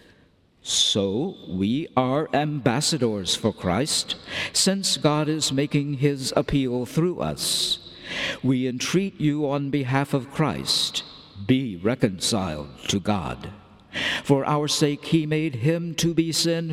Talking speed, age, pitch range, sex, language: 120 wpm, 60-79, 110-150 Hz, male, English